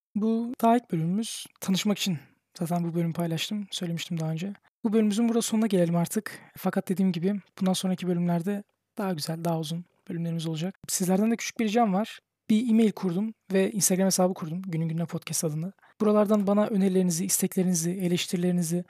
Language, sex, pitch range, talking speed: Turkish, male, 170-195 Hz, 170 wpm